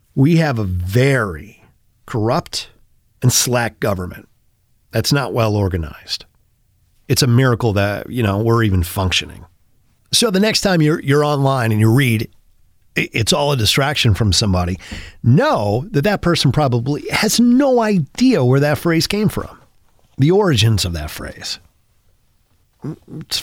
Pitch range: 100-150 Hz